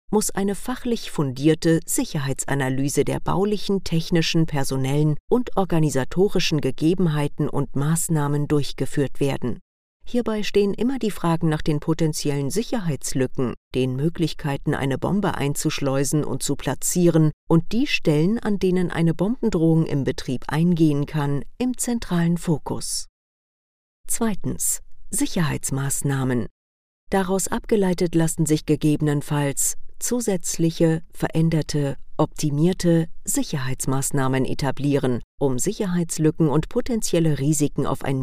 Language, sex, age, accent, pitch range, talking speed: German, female, 40-59, German, 135-180 Hz, 105 wpm